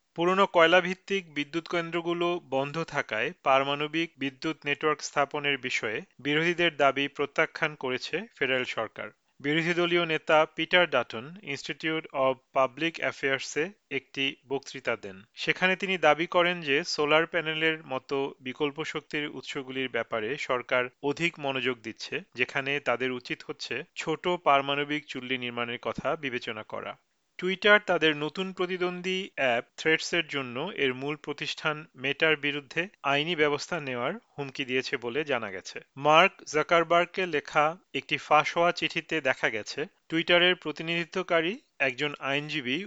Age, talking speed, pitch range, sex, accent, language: 40-59, 120 wpm, 135-165 Hz, male, native, Bengali